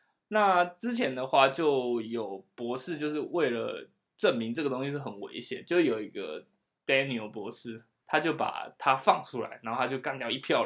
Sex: male